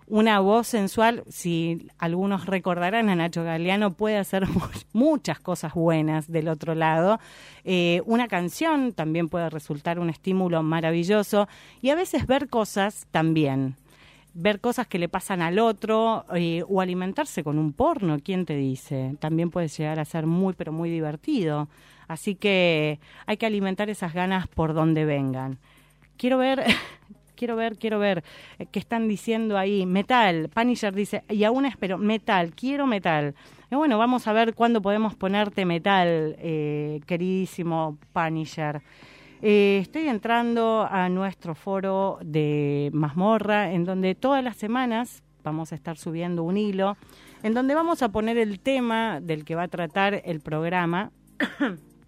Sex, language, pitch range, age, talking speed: female, Spanish, 160-215 Hz, 40-59, 150 wpm